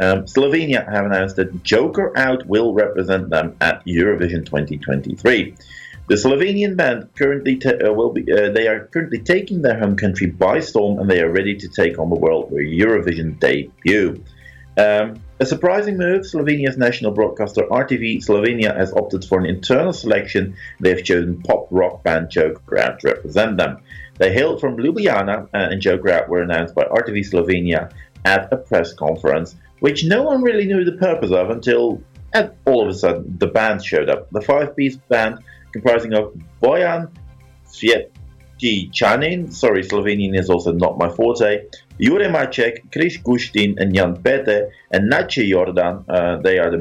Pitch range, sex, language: 90-130 Hz, male, English